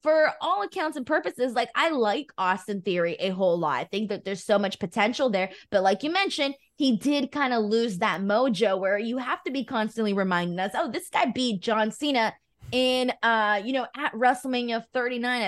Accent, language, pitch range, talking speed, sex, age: American, English, 200-275 Hz, 205 wpm, female, 20-39